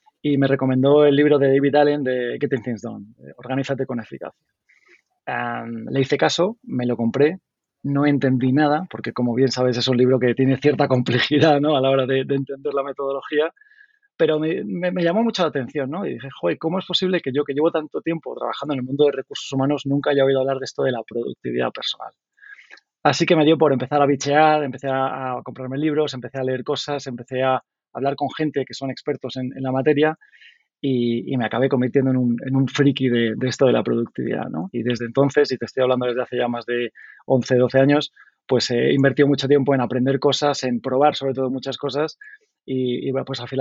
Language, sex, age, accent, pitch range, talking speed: Spanish, male, 20-39, Spanish, 125-145 Hz, 225 wpm